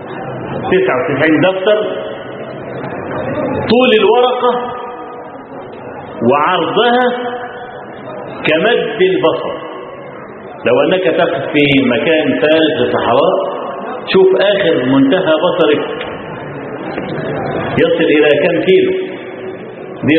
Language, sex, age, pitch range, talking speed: Arabic, male, 50-69, 135-215 Hz, 70 wpm